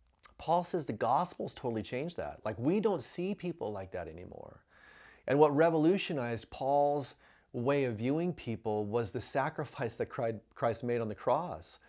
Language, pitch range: English, 110-140 Hz